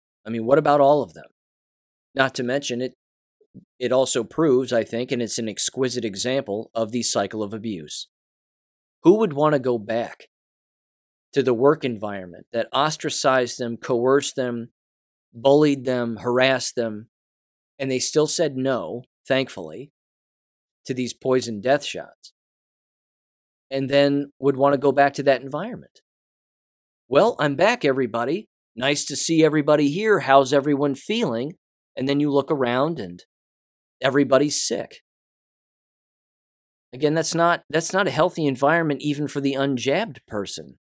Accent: American